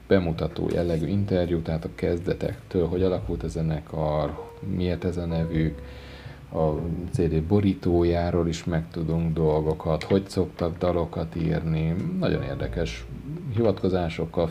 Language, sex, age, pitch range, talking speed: Hungarian, male, 40-59, 85-100 Hz, 115 wpm